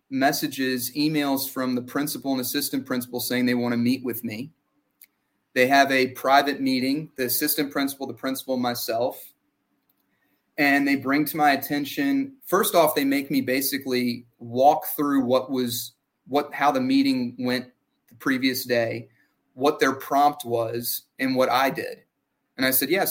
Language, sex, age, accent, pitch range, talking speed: English, male, 30-49, American, 125-145 Hz, 160 wpm